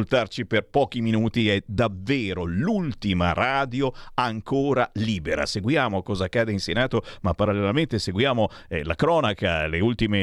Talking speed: 130 wpm